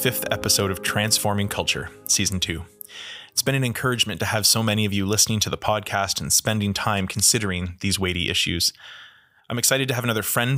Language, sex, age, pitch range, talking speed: English, male, 20-39, 95-110 Hz, 195 wpm